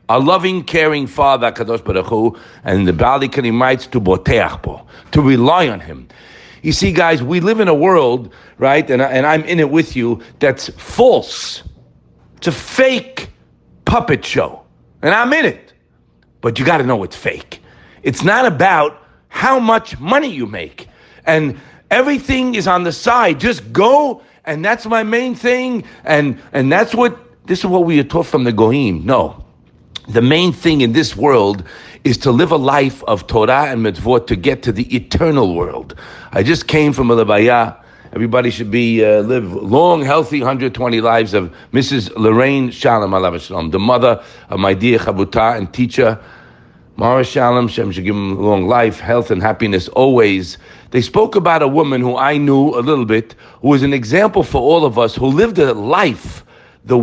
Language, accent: English, American